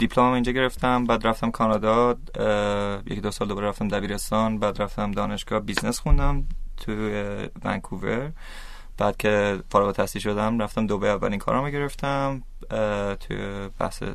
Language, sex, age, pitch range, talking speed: Persian, male, 20-39, 100-110 Hz, 130 wpm